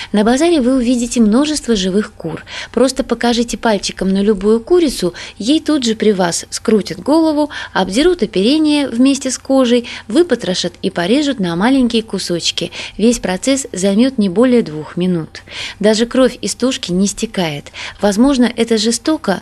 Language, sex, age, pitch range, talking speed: Russian, female, 20-39, 185-255 Hz, 145 wpm